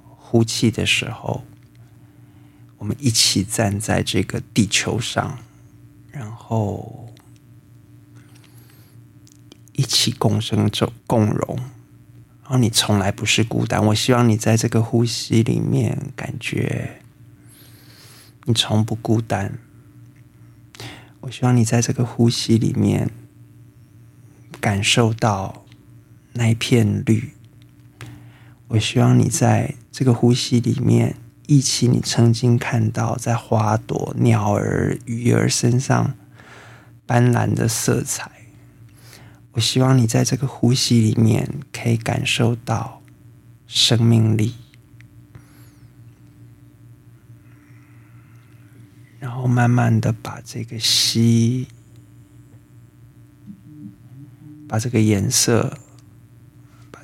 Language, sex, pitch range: Chinese, male, 110-125 Hz